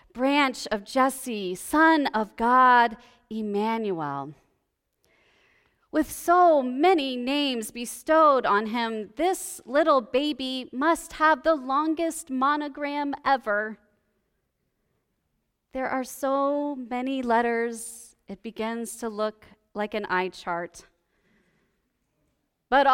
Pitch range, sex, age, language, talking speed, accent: 215-275 Hz, female, 30-49, English, 95 wpm, American